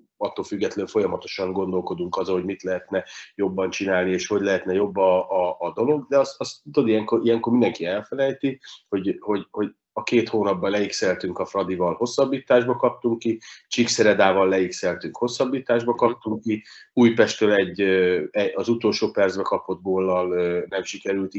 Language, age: Hungarian, 30-49